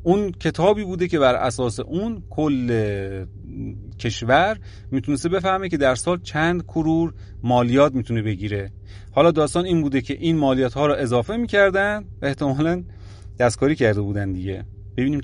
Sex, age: male, 30-49